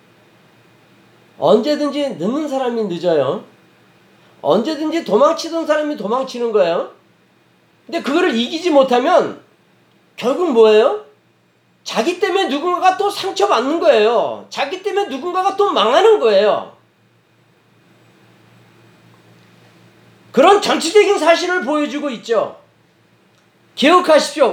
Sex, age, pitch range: male, 40-59, 275-395 Hz